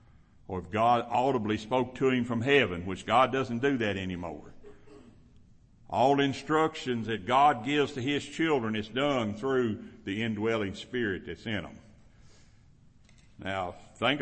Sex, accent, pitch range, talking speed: male, American, 105-135 Hz, 145 wpm